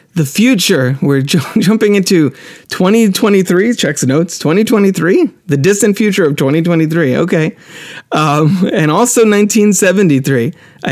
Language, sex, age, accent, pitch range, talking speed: English, male, 30-49, American, 135-175 Hz, 115 wpm